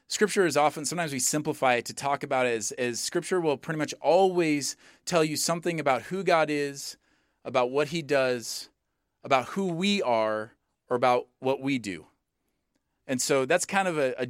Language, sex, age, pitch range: English, male, 30-49, 135-165 Hz